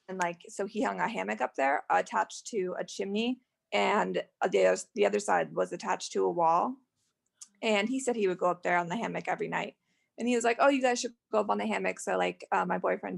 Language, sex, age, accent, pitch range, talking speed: English, female, 20-39, American, 175-225 Hz, 250 wpm